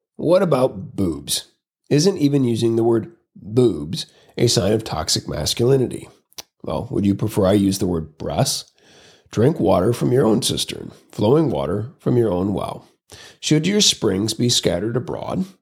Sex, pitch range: male, 100-135 Hz